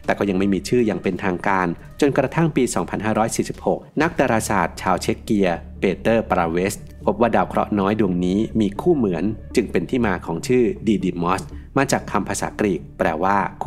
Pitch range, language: 85-110 Hz, Thai